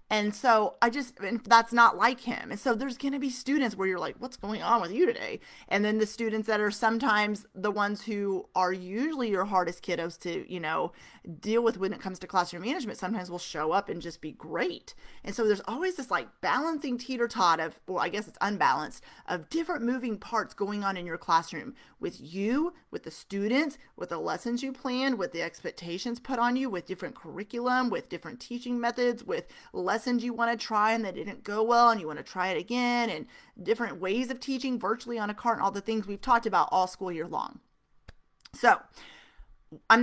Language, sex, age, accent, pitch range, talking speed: English, female, 30-49, American, 190-245 Hz, 215 wpm